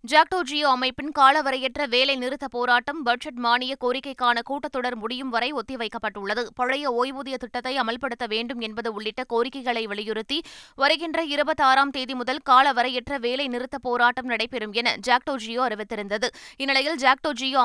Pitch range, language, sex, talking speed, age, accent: 240-280 Hz, Tamil, female, 125 wpm, 20-39, native